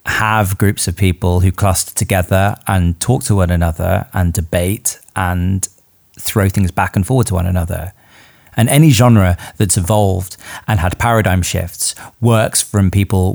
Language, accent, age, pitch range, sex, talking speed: English, British, 30-49, 90-105 Hz, male, 155 wpm